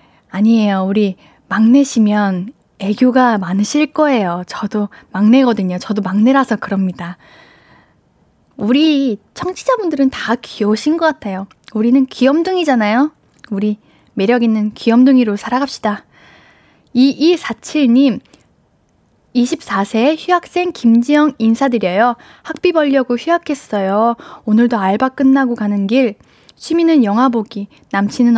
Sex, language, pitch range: female, Korean, 215-290 Hz